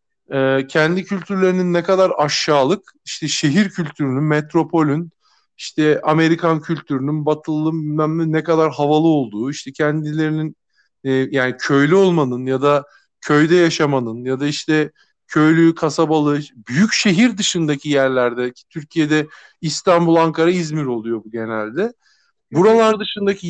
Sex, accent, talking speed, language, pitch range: male, native, 115 wpm, Turkish, 145-185 Hz